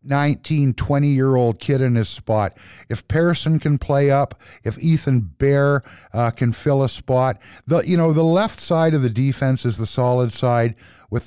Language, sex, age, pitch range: English, male, 50-69, 115-145 Hz